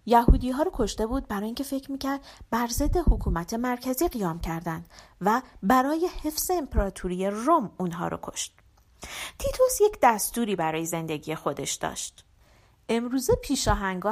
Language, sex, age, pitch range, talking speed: Persian, female, 40-59, 190-305 Hz, 130 wpm